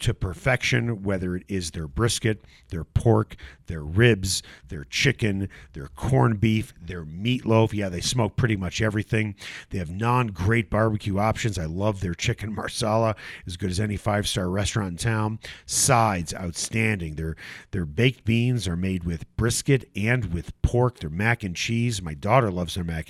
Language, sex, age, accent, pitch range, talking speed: English, male, 40-59, American, 90-120 Hz, 165 wpm